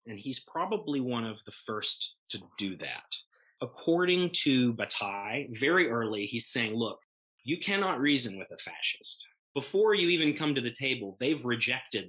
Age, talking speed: 30-49, 165 wpm